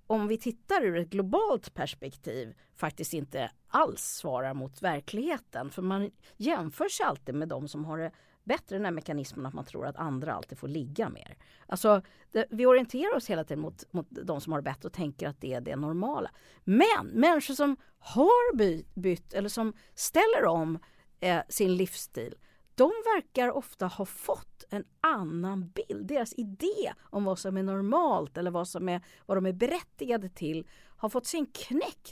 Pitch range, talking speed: 155-240 Hz, 180 wpm